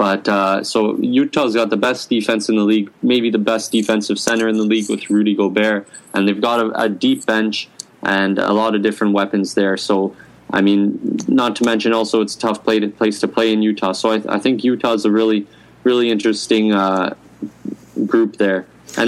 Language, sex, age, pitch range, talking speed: English, male, 20-39, 100-115 Hz, 210 wpm